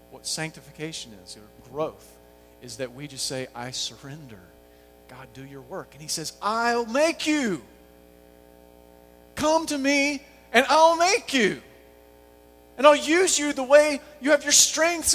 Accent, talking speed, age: American, 155 wpm, 40-59